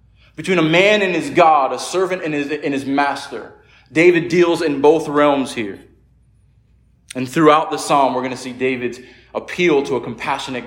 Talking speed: 180 wpm